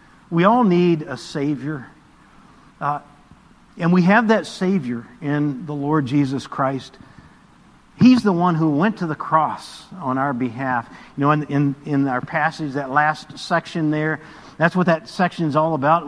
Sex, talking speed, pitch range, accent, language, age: male, 170 wpm, 140-180 Hz, American, English, 50-69